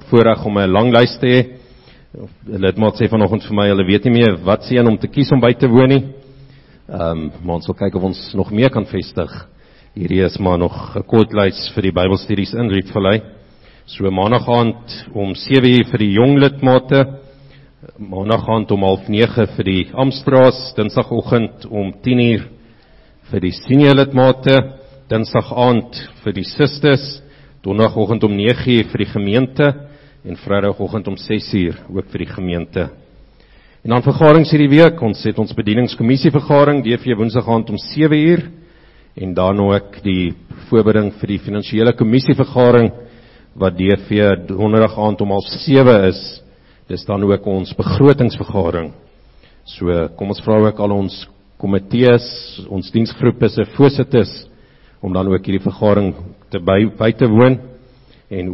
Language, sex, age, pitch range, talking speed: English, male, 50-69, 100-125 Hz, 150 wpm